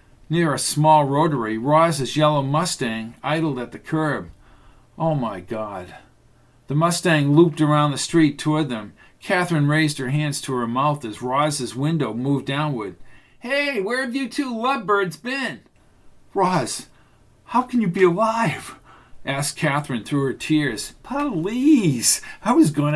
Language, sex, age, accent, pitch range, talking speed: English, male, 50-69, American, 130-170 Hz, 145 wpm